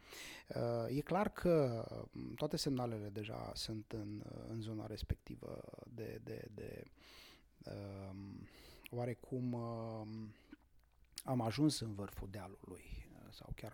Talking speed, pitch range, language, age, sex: 95 wpm, 110-150 Hz, English, 20-39, male